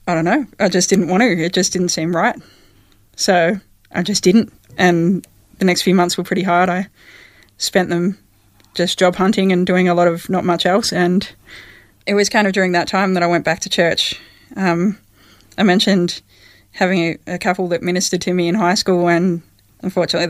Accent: Australian